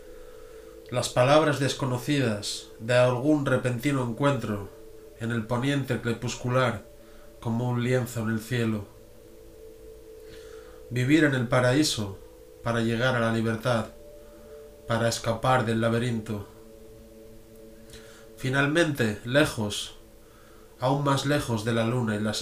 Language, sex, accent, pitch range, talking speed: Spanish, male, Spanish, 110-135 Hz, 105 wpm